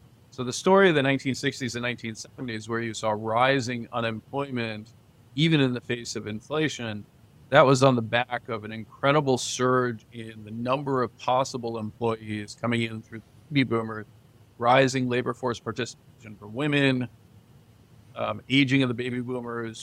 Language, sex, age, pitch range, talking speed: English, male, 40-59, 115-130 Hz, 155 wpm